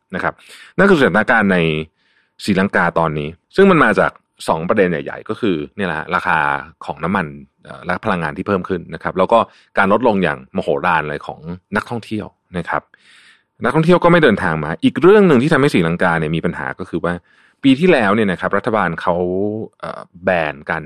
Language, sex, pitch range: Thai, male, 80-105 Hz